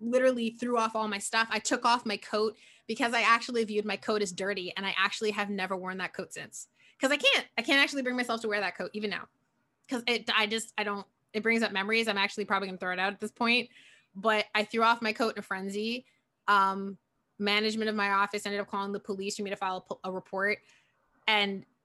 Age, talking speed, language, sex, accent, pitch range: 20-39, 245 wpm, English, female, American, 200-225 Hz